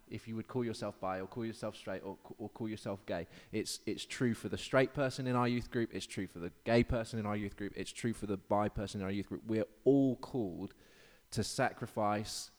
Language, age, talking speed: English, 20-39, 250 wpm